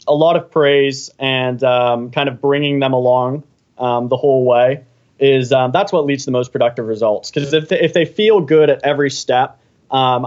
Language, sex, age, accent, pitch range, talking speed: English, male, 20-39, American, 130-165 Hz, 210 wpm